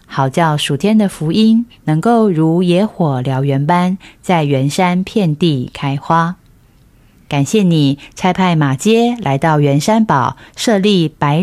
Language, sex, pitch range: Chinese, female, 145-210 Hz